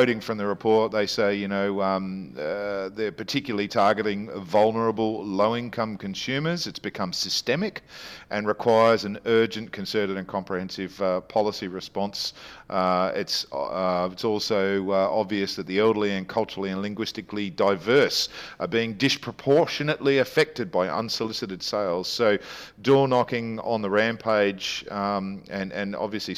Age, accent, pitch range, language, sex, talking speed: 50-69, Australian, 95-115 Hz, English, male, 135 wpm